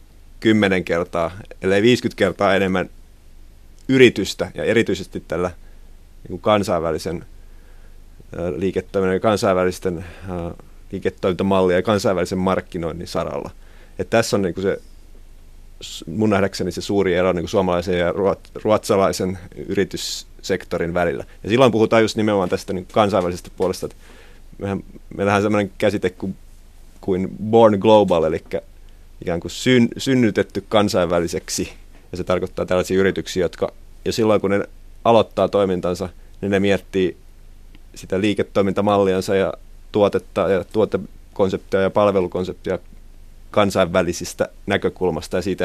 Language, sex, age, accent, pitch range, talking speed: Finnish, male, 30-49, native, 85-100 Hz, 110 wpm